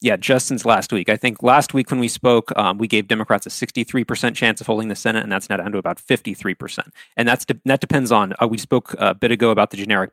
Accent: American